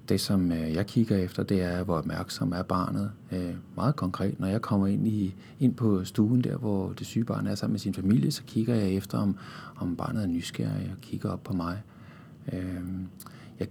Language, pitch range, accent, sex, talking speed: Danish, 95-120 Hz, native, male, 210 wpm